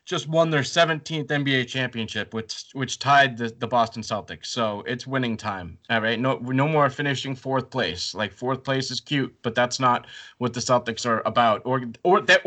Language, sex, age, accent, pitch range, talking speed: English, male, 30-49, American, 125-165 Hz, 195 wpm